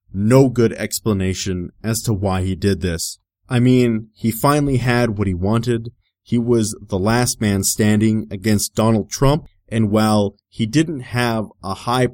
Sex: male